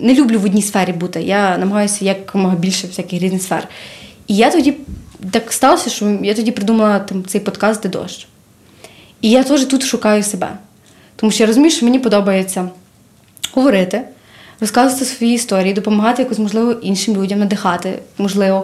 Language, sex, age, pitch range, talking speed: Ukrainian, female, 20-39, 190-240 Hz, 160 wpm